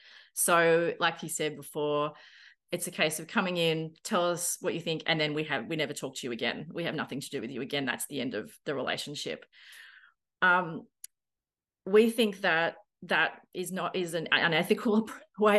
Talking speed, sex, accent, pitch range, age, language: 195 wpm, female, Australian, 160-205 Hz, 30-49, English